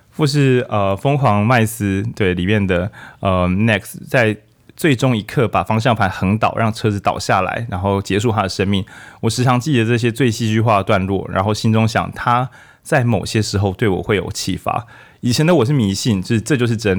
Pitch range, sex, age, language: 95-120 Hz, male, 20-39, Chinese